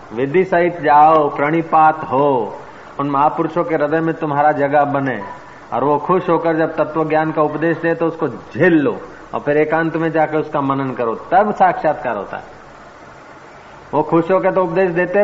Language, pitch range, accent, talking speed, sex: Hindi, 140-165 Hz, native, 175 wpm, male